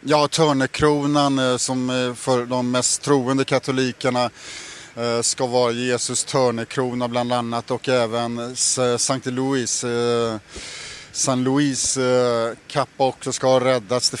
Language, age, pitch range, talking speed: Swedish, 30-49, 125-140 Hz, 105 wpm